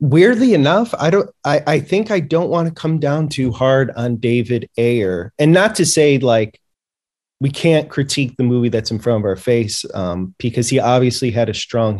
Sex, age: male, 20-39